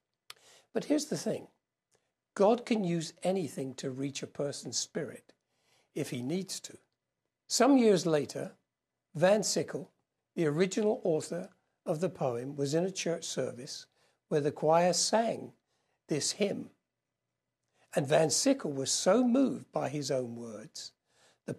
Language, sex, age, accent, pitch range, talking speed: English, male, 60-79, British, 145-205 Hz, 140 wpm